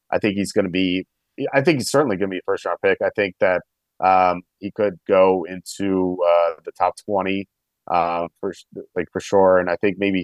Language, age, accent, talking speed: English, 30-49, American, 225 wpm